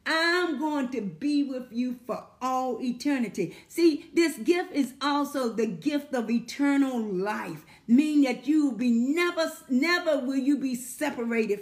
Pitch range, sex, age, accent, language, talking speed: 235-305 Hz, female, 40-59, American, English, 155 wpm